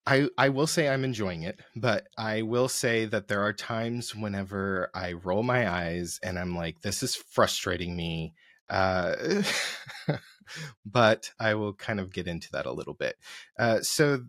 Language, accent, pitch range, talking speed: English, American, 95-125 Hz, 170 wpm